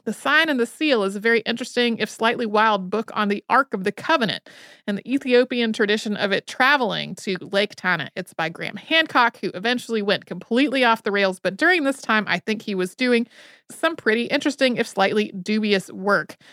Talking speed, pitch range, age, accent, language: 205 wpm, 195-245 Hz, 30-49, American, English